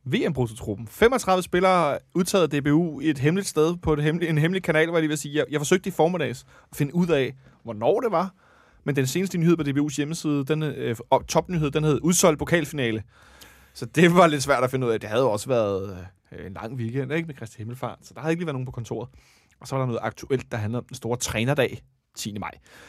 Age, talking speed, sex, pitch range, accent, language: 30-49, 240 wpm, male, 115-160 Hz, native, Danish